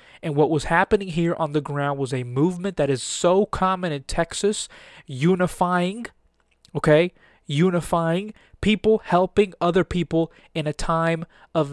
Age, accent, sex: 20-39, American, male